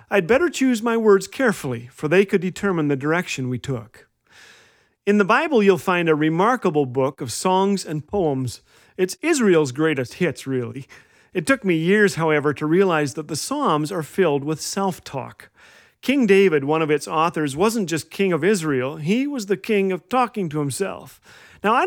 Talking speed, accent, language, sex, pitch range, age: 180 wpm, American, English, male, 150-200 Hz, 40-59